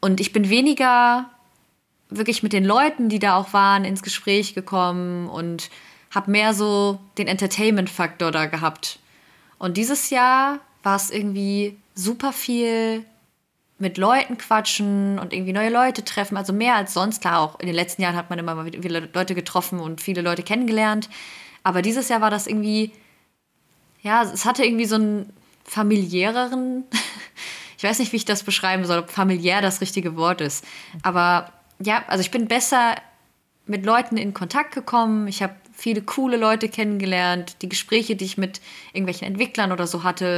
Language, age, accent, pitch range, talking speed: German, 20-39, German, 185-220 Hz, 170 wpm